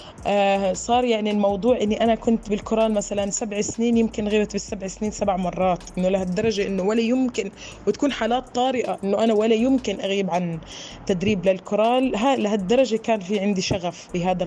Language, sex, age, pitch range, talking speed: Arabic, female, 20-39, 190-225 Hz, 160 wpm